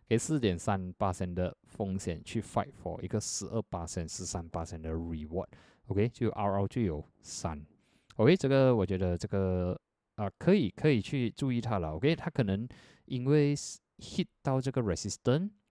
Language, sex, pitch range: Chinese, male, 90-115 Hz